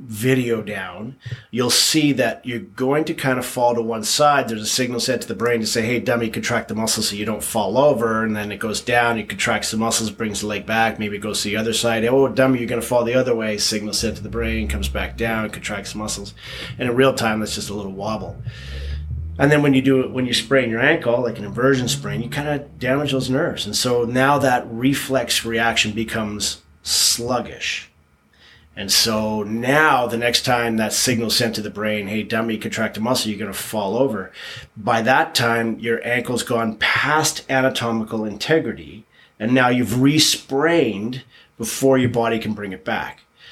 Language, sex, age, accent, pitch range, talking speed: English, male, 30-49, American, 105-125 Hz, 210 wpm